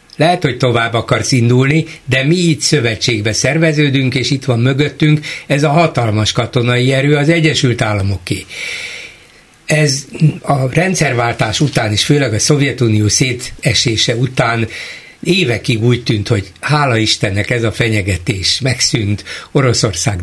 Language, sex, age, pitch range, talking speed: Hungarian, male, 60-79, 115-155 Hz, 130 wpm